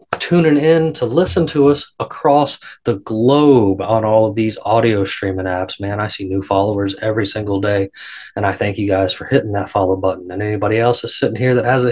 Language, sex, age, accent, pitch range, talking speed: English, male, 20-39, American, 110-145 Hz, 210 wpm